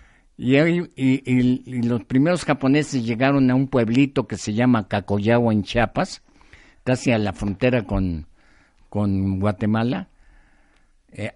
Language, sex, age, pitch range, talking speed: Spanish, male, 50-69, 110-135 Hz, 130 wpm